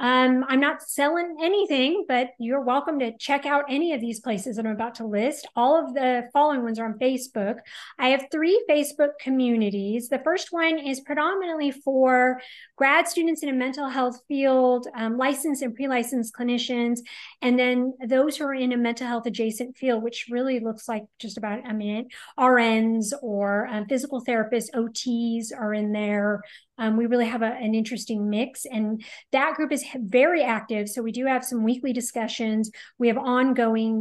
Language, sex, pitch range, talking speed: English, female, 225-275 Hz, 180 wpm